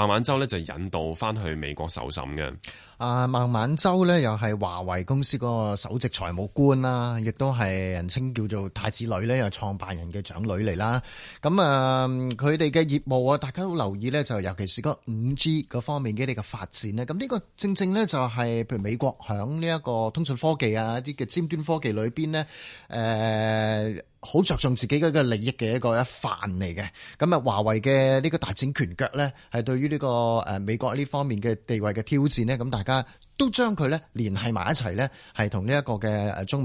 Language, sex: Chinese, male